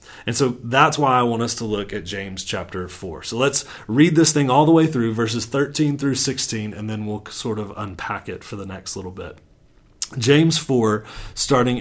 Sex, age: male, 30-49